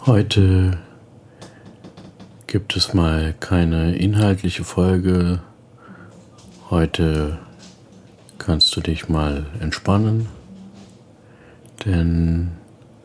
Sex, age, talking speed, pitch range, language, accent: male, 50-69, 65 wpm, 85-115 Hz, German, German